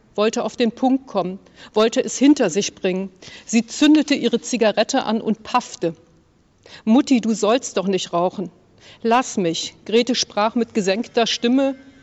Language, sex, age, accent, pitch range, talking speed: German, female, 50-69, German, 195-250 Hz, 150 wpm